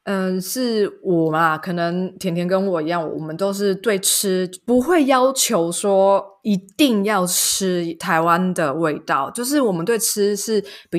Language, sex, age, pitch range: Chinese, female, 20-39, 165-205 Hz